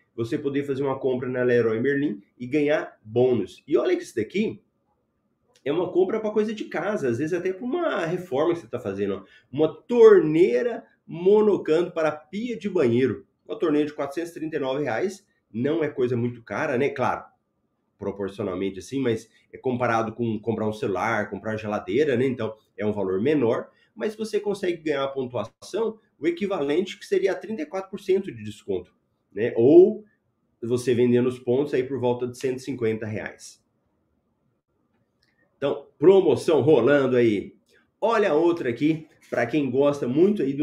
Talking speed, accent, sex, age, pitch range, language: 155 wpm, Brazilian, male, 30-49, 120-190 Hz, Portuguese